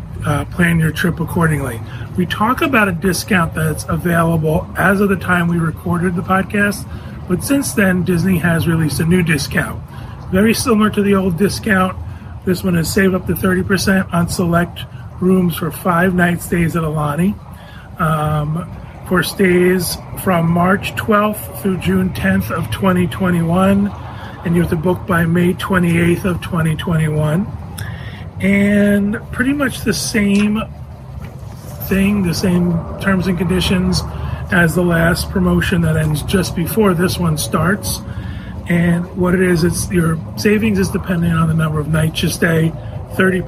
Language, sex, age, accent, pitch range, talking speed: English, male, 30-49, American, 155-190 Hz, 155 wpm